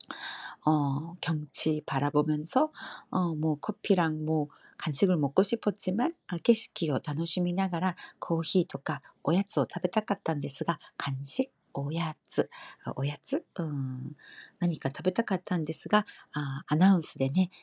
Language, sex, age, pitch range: Korean, female, 40-59, 150-190 Hz